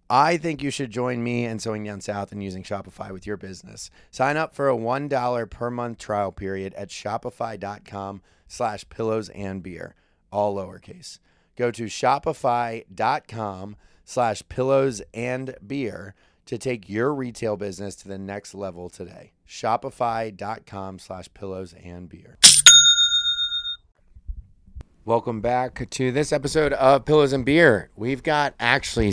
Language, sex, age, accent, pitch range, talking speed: English, male, 30-49, American, 95-120 Hz, 140 wpm